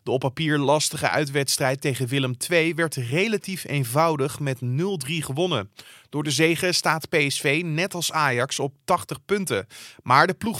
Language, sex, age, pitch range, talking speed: Dutch, male, 30-49, 130-165 Hz, 160 wpm